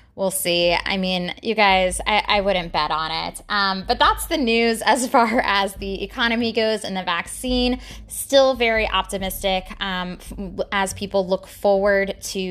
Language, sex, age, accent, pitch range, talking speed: English, female, 20-39, American, 185-225 Hz, 170 wpm